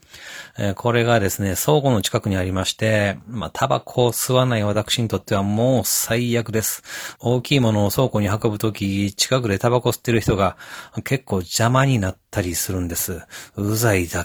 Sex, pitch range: male, 100-120 Hz